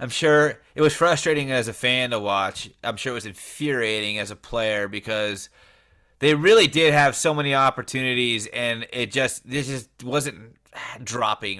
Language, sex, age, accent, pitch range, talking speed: English, male, 30-49, American, 110-135 Hz, 170 wpm